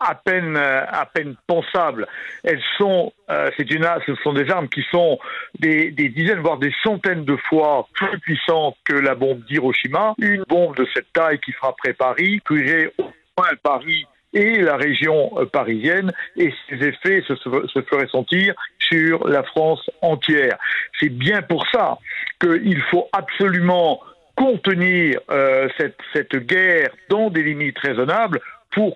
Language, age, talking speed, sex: French, 60-79, 155 wpm, male